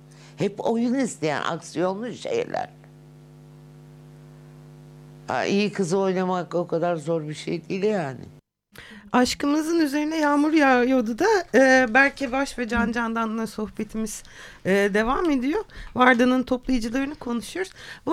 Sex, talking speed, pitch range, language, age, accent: female, 115 wpm, 210-275 Hz, Turkish, 60-79, native